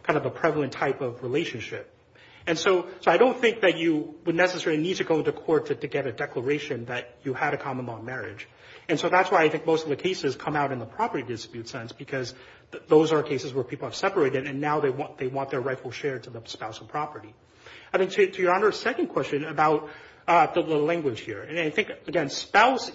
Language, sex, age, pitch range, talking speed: English, male, 30-49, 135-175 Hz, 245 wpm